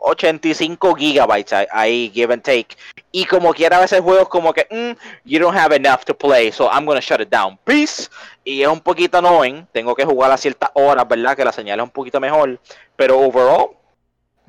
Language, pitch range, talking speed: English, 130-185 Hz, 205 wpm